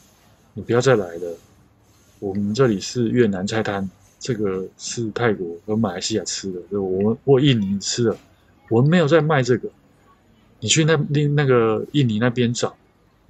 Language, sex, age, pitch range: Chinese, male, 20-39, 100-125 Hz